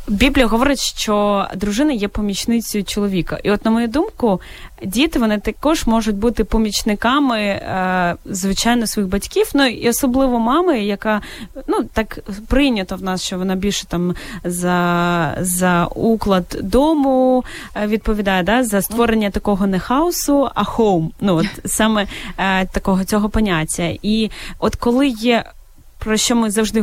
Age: 20-39